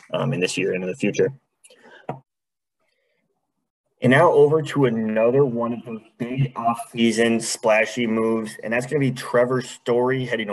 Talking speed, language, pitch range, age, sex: 160 wpm, English, 105-125 Hz, 30-49, male